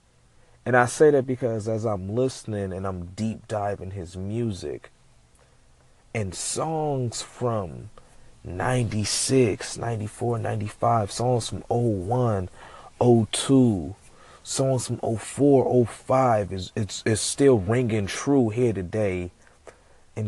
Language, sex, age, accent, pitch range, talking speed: English, male, 30-49, American, 95-125 Hz, 110 wpm